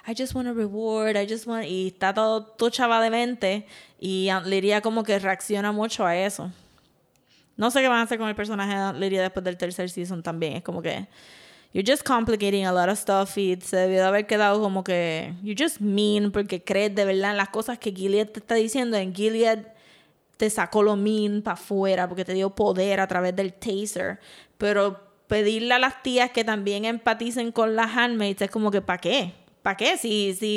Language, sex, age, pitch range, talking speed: Spanish, female, 20-39, 195-235 Hz, 210 wpm